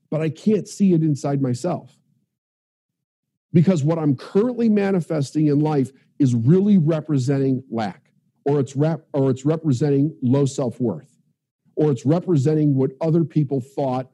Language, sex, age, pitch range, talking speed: English, male, 50-69, 140-175 Hz, 140 wpm